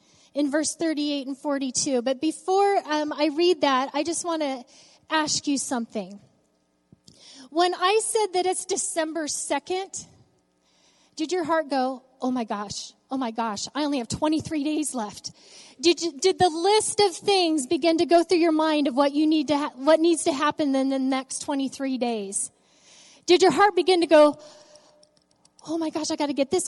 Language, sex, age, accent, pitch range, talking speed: English, female, 30-49, American, 260-345 Hz, 180 wpm